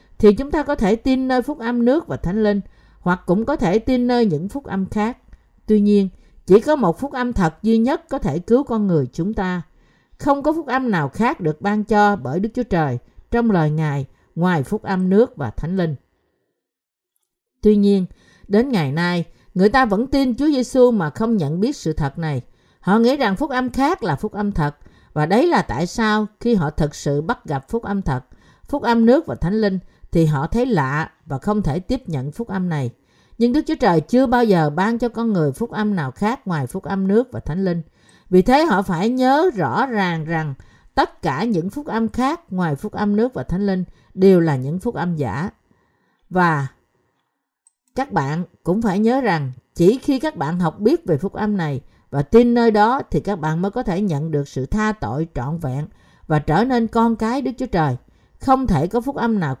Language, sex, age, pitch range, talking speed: Vietnamese, female, 50-69, 160-235 Hz, 220 wpm